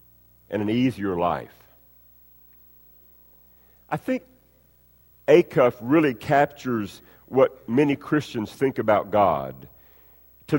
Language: English